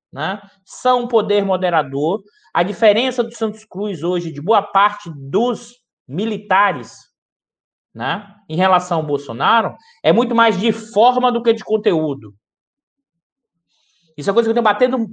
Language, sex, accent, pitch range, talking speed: Portuguese, male, Brazilian, 190-255 Hz, 145 wpm